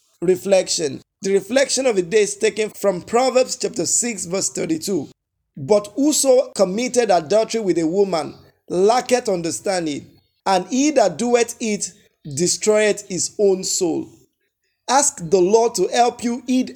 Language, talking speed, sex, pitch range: English, 145 wpm, male, 180-225 Hz